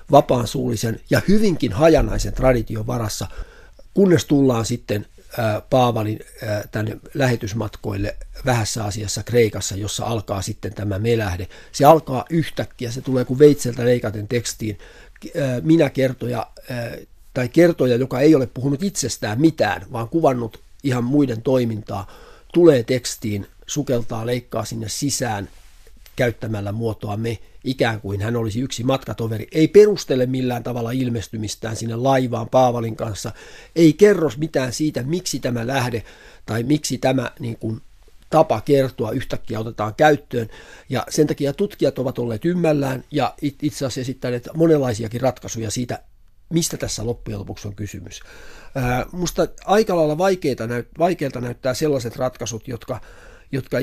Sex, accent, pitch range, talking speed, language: male, native, 110-140 Hz, 125 wpm, Finnish